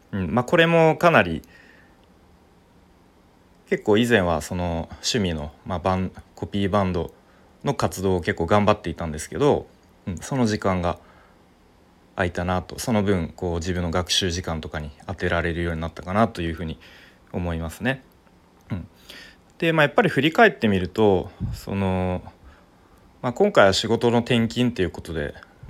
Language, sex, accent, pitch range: Japanese, male, native, 85-105 Hz